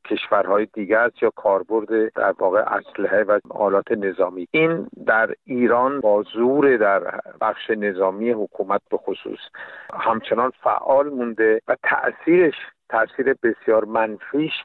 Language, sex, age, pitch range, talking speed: Persian, male, 50-69, 110-135 Hz, 120 wpm